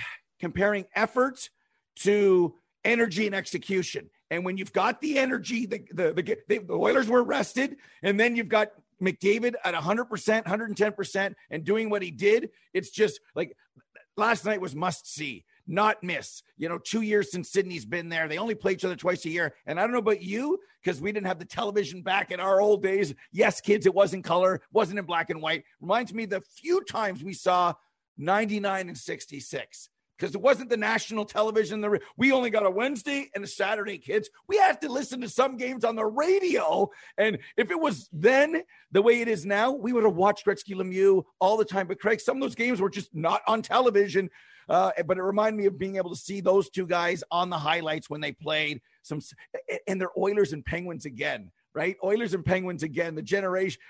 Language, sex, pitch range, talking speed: English, male, 185-230 Hz, 205 wpm